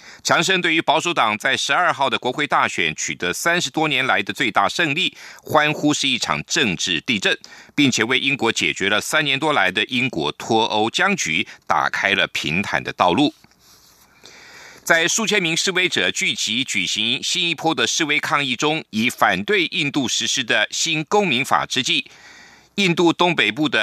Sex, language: male, German